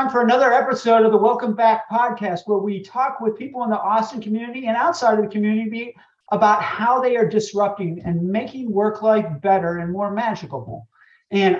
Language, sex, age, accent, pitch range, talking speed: English, male, 50-69, American, 175-220 Hz, 185 wpm